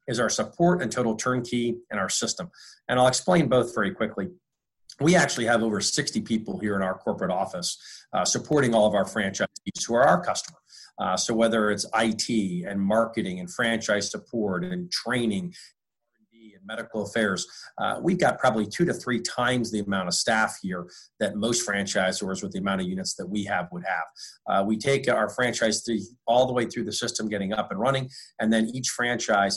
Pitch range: 105-125 Hz